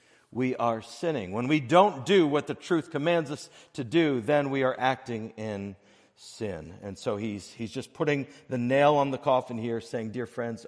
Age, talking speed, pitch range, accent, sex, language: 50-69, 195 wpm, 115-145 Hz, American, male, English